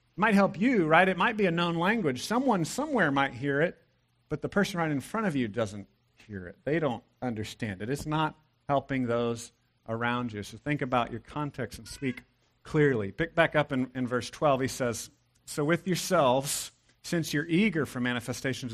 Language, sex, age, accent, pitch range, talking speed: English, male, 40-59, American, 120-150 Hz, 200 wpm